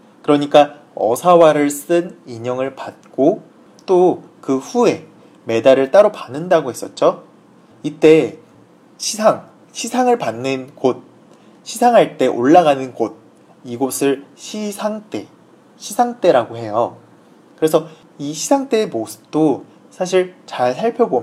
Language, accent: Chinese, Korean